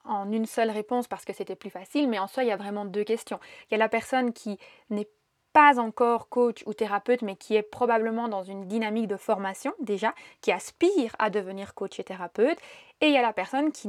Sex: female